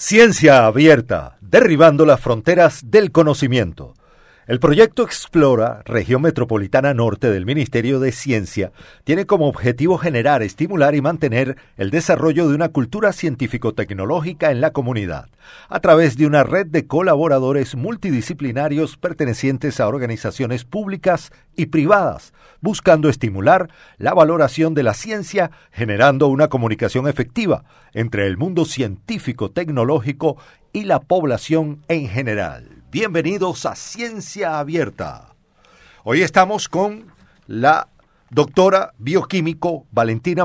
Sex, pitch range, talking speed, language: male, 125-165 Hz, 115 wpm, Spanish